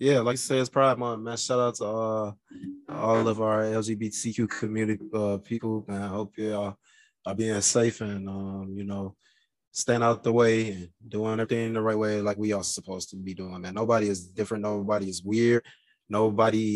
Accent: American